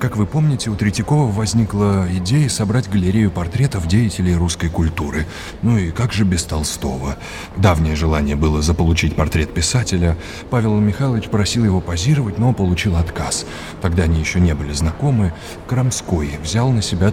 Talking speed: 150 wpm